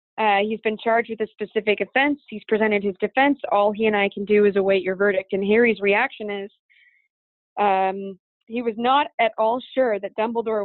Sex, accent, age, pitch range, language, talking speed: female, American, 20-39, 200-235 Hz, English, 195 wpm